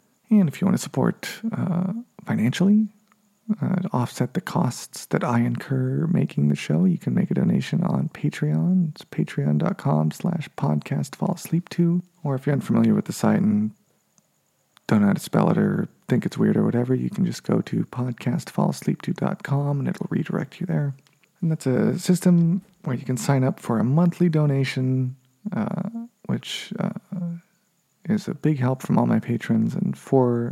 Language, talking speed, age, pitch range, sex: English, 180 wpm, 40-59, 135-190 Hz, male